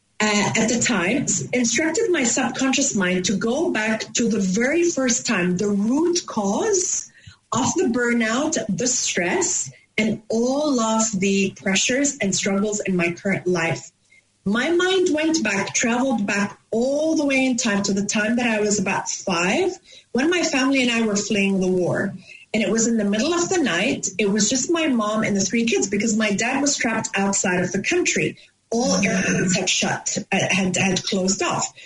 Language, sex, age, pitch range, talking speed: English, female, 30-49, 200-265 Hz, 185 wpm